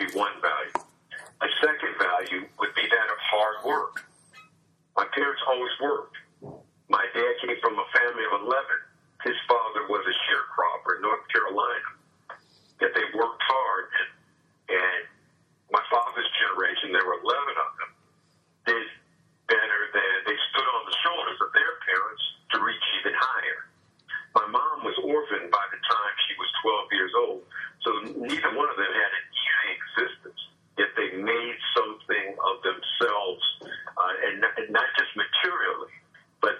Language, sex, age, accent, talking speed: English, male, 50-69, American, 150 wpm